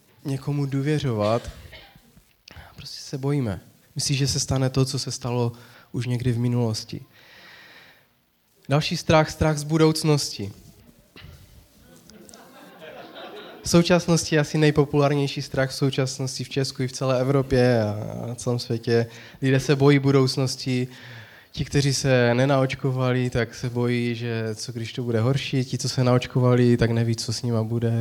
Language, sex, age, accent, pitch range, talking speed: Czech, male, 20-39, native, 120-140 Hz, 140 wpm